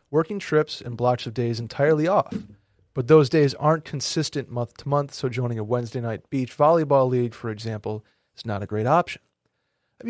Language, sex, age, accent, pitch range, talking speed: English, male, 30-49, American, 115-150 Hz, 190 wpm